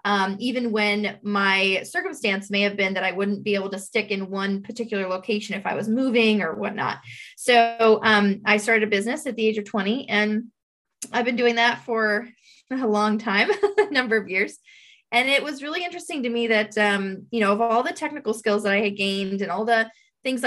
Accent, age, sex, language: American, 20-39, female, English